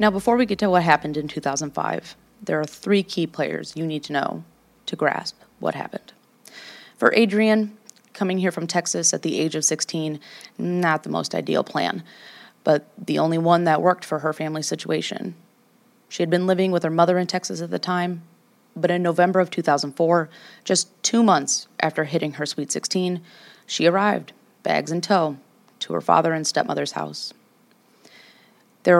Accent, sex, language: American, female, English